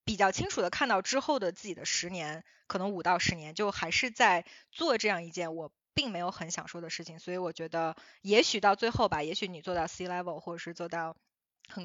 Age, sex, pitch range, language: 20-39, female, 175-225 Hz, Chinese